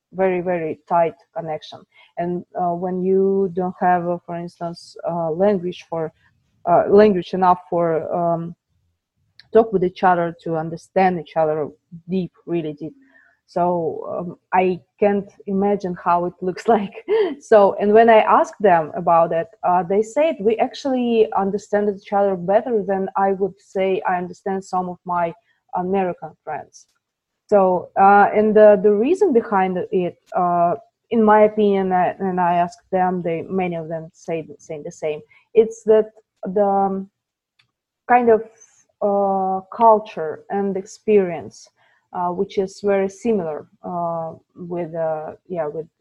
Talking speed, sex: 150 wpm, female